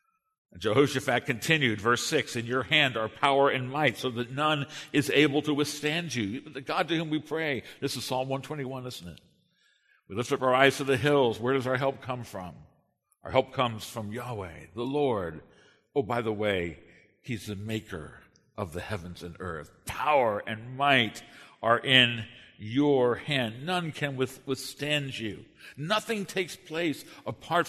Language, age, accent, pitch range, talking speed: English, 60-79, American, 110-150 Hz, 175 wpm